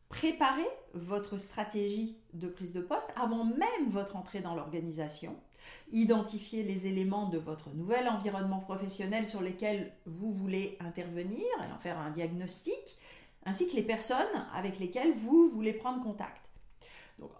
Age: 50-69